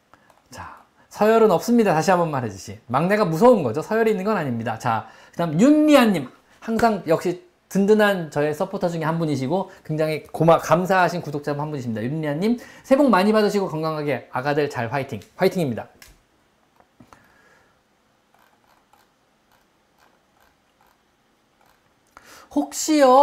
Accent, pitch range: native, 155-225 Hz